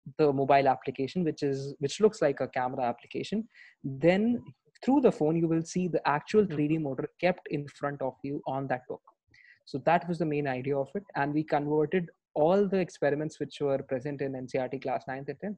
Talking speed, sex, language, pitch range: 200 wpm, male, English, 135-165 Hz